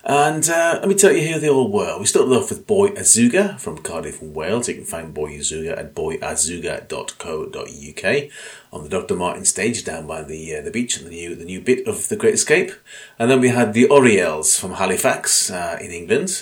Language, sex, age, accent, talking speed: English, male, 30-49, British, 210 wpm